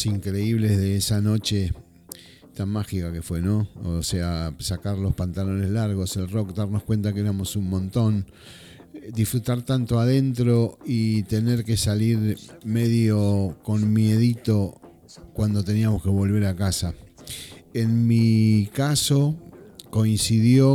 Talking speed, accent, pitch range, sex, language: 125 wpm, Argentinian, 95-115 Hz, male, Spanish